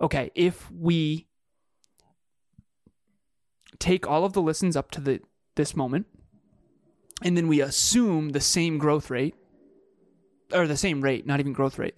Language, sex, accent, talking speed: English, male, American, 145 wpm